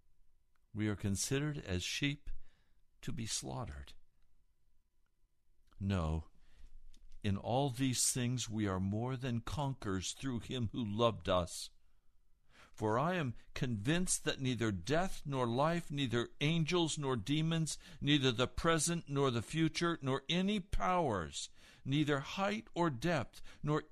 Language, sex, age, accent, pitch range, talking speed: English, male, 60-79, American, 95-145 Hz, 125 wpm